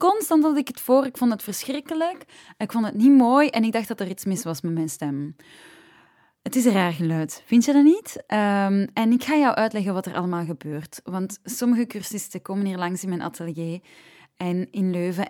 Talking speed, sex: 215 wpm, female